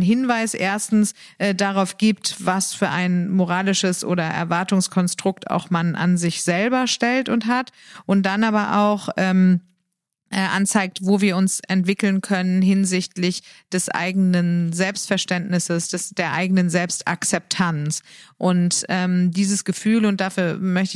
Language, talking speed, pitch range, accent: German, 130 wpm, 175-190 Hz, German